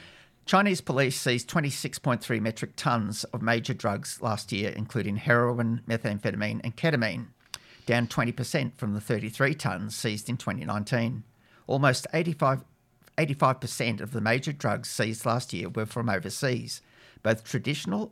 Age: 50-69